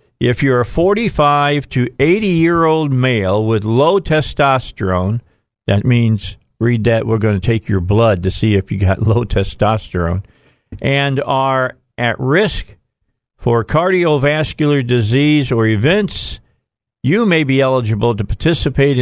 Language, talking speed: English, 140 wpm